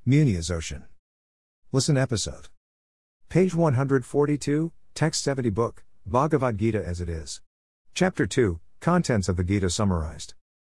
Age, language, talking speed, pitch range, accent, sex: 50-69, English, 120 wpm, 85-115 Hz, American, male